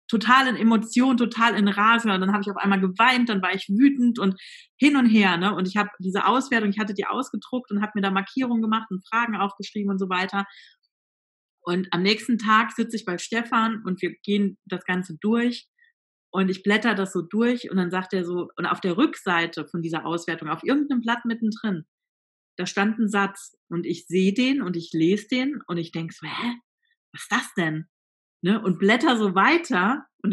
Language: German